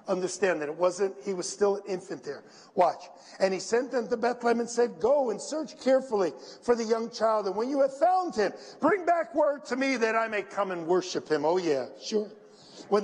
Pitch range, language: 195-275 Hz, English